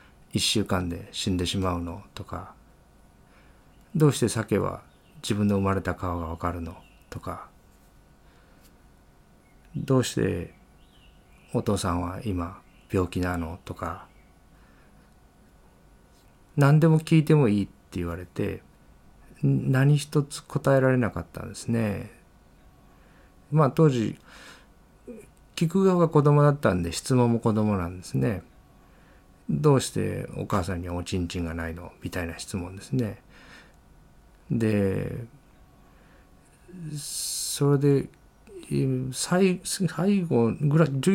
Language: Japanese